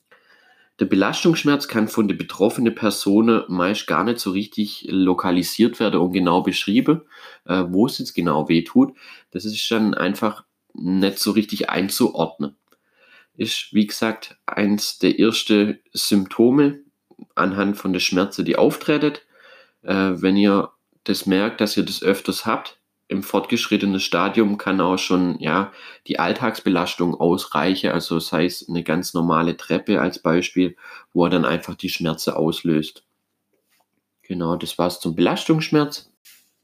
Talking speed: 140 wpm